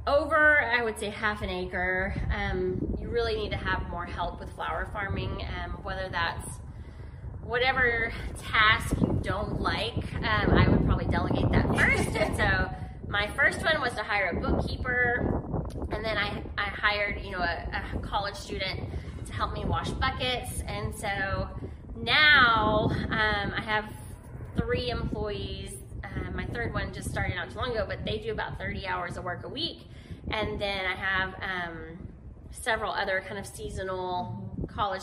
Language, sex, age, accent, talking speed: English, female, 20-39, American, 165 wpm